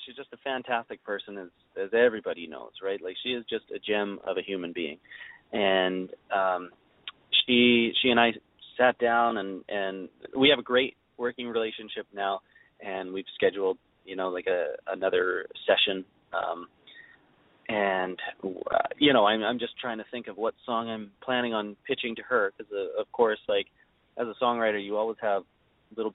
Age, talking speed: 30-49, 180 wpm